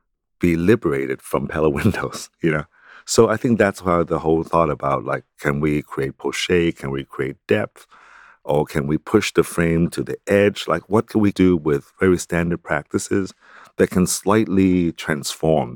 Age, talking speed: 60-79, 180 wpm